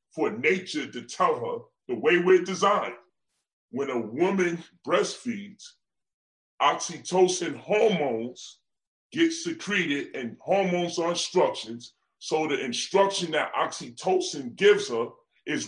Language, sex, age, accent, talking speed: English, female, 30-49, American, 110 wpm